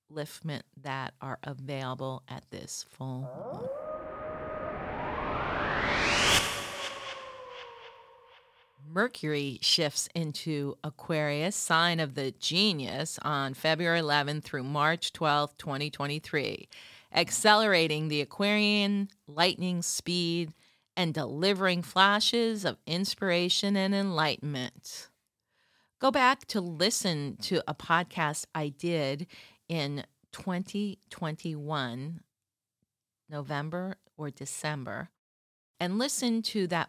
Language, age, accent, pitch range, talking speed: English, 40-59, American, 145-200 Hz, 85 wpm